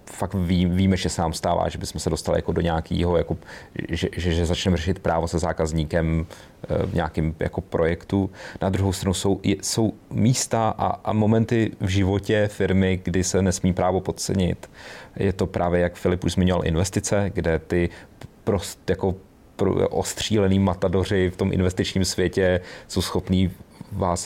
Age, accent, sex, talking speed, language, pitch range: 30-49, native, male, 155 wpm, Czech, 85-95 Hz